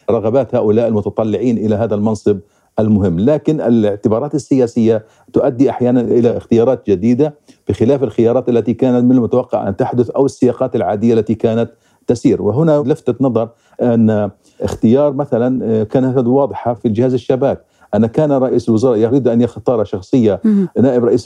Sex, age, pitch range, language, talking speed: male, 50-69, 115-135 Hz, Arabic, 140 wpm